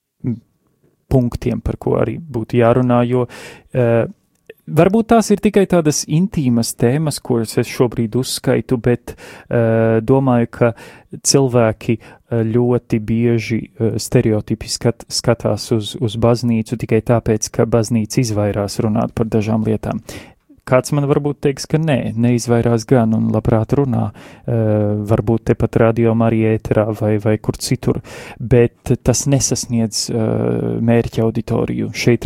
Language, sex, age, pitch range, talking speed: English, male, 30-49, 115-130 Hz, 125 wpm